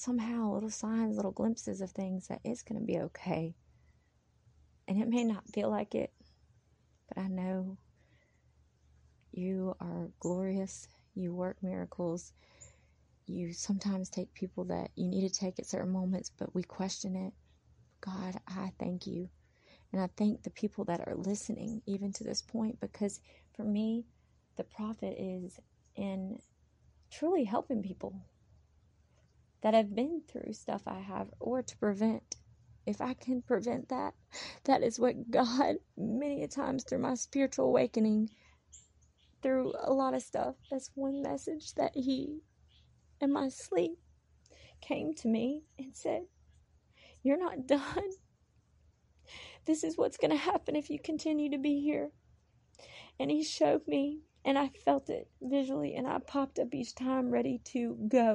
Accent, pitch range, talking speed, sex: American, 185-265 Hz, 150 wpm, female